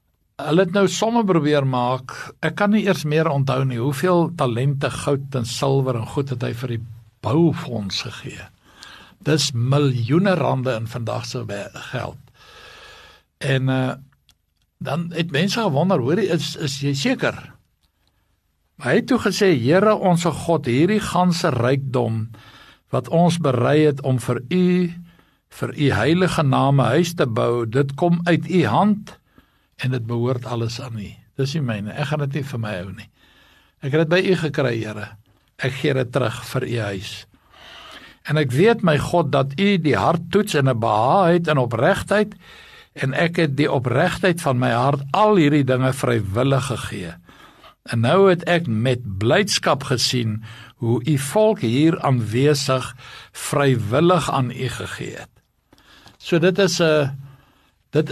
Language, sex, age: English, male, 60-79